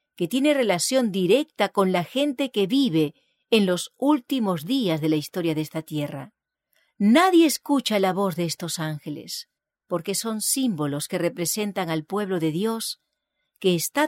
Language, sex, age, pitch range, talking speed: English, female, 40-59, 165-255 Hz, 160 wpm